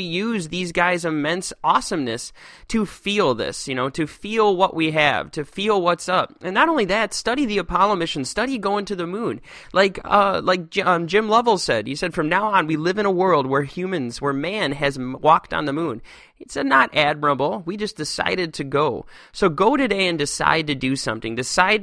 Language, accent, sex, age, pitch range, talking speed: English, American, male, 20-39, 150-190 Hz, 205 wpm